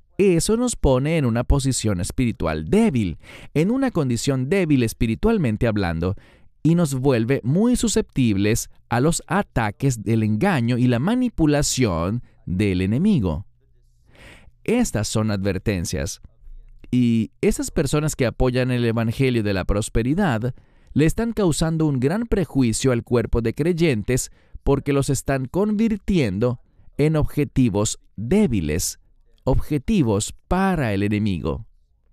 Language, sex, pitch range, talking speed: English, male, 95-135 Hz, 120 wpm